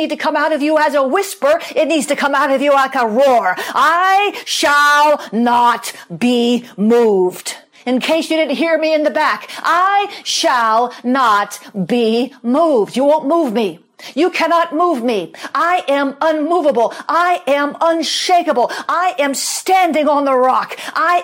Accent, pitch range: American, 245-310 Hz